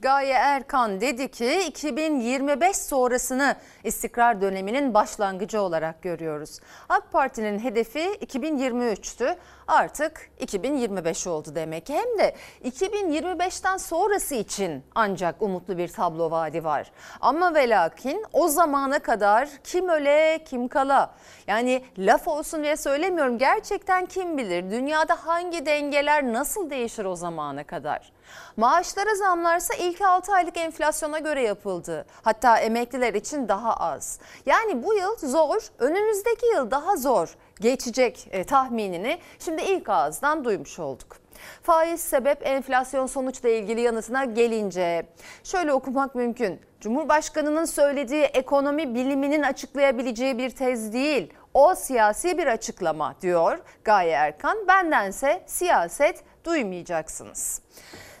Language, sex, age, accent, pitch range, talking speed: Turkish, female, 40-59, native, 225-325 Hz, 115 wpm